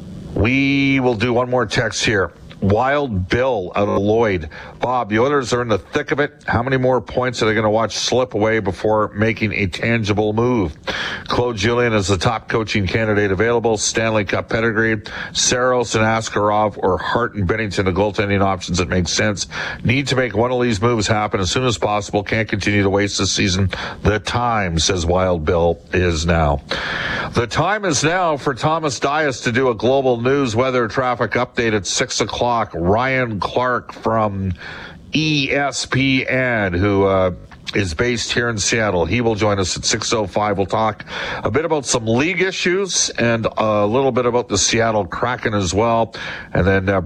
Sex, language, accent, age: male, English, American, 50-69